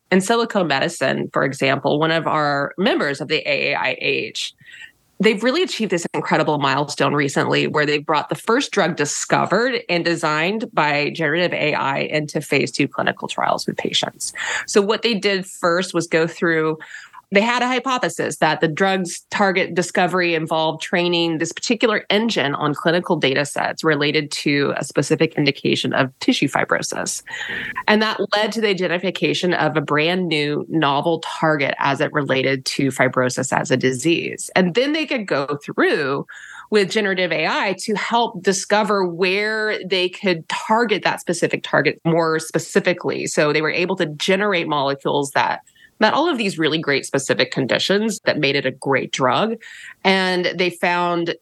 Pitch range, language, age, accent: 155-205 Hz, English, 20-39, American